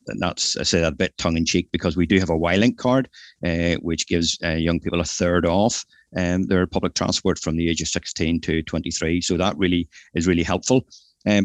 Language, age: English, 30-49